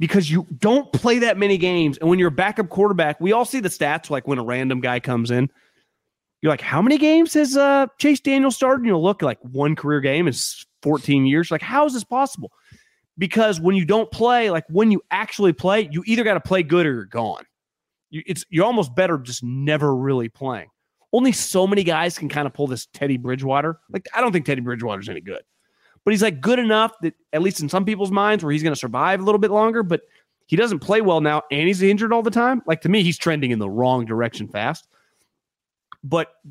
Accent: American